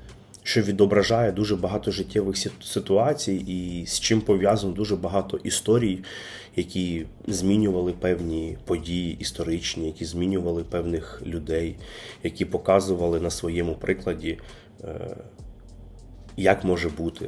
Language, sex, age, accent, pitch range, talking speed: Ukrainian, male, 30-49, native, 90-100 Hz, 105 wpm